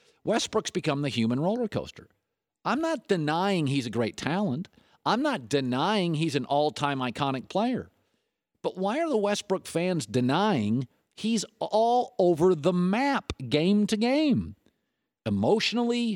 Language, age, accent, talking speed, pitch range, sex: English, 50-69, American, 135 wpm, 135-210 Hz, male